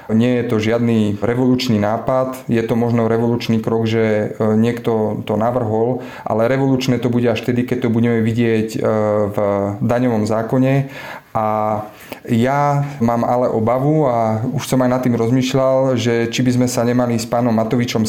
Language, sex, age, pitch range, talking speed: Slovak, male, 30-49, 110-125 Hz, 165 wpm